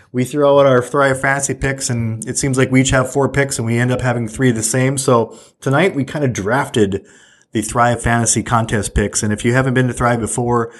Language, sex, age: English, male, 20-39